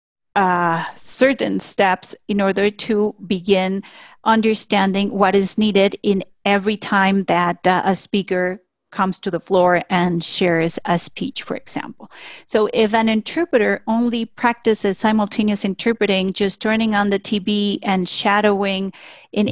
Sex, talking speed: female, 135 wpm